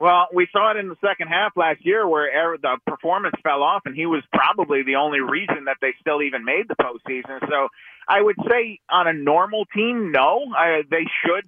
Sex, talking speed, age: male, 215 wpm, 30-49